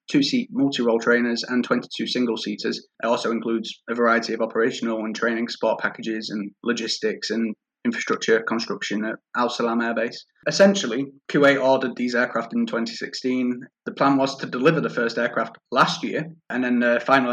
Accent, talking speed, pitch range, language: British, 175 wpm, 115-135 Hz, English